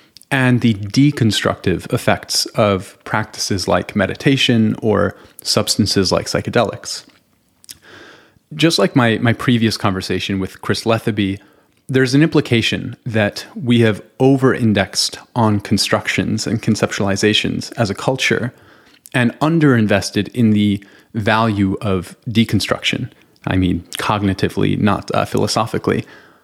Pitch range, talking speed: 105-130 Hz, 110 wpm